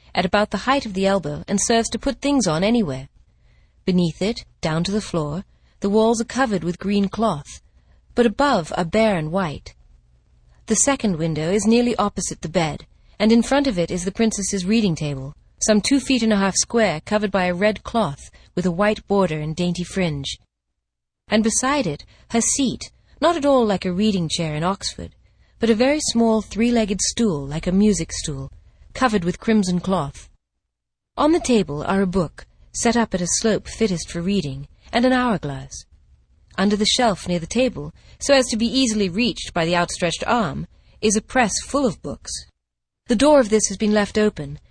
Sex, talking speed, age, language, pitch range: female, 195 wpm, 40-59, English, 160-230 Hz